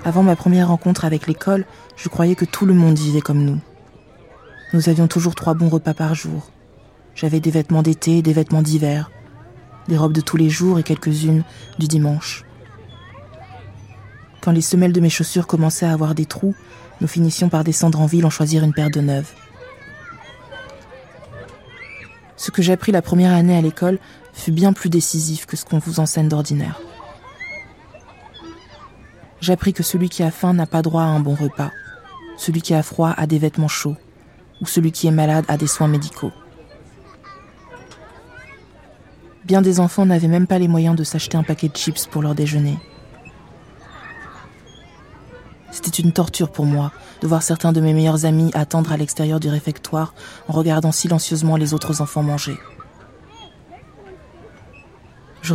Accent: French